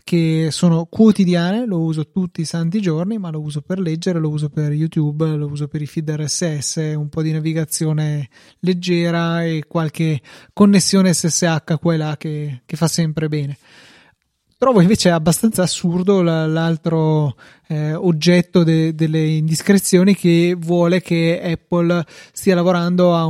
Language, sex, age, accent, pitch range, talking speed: Italian, male, 20-39, native, 155-180 Hz, 140 wpm